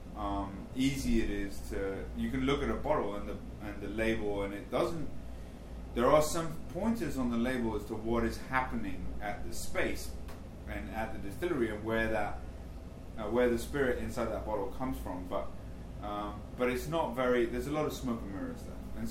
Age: 30-49